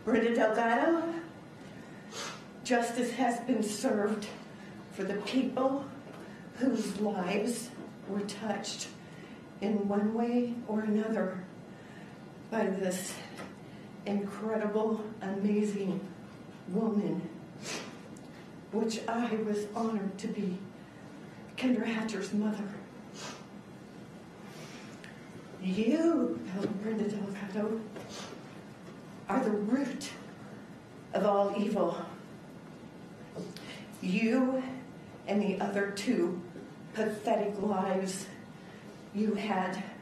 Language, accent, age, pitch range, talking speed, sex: Finnish, American, 40-59, 190-220 Hz, 75 wpm, female